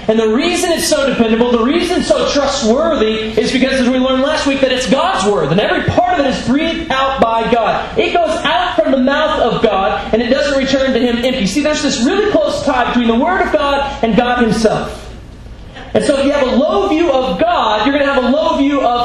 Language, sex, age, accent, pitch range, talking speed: English, male, 30-49, American, 195-280 Hz, 250 wpm